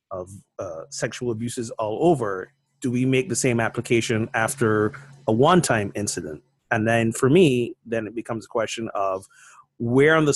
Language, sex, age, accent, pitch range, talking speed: English, male, 30-49, American, 115-135 Hz, 170 wpm